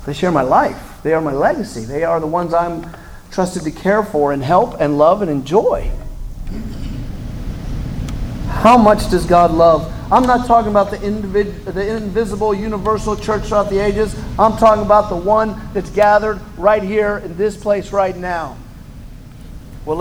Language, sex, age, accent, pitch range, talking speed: English, male, 40-59, American, 155-215 Hz, 170 wpm